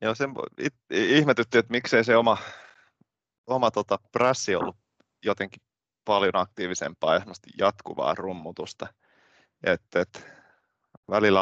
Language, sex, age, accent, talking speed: Finnish, male, 20-39, native, 95 wpm